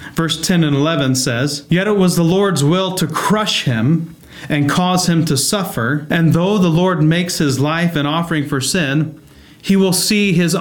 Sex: male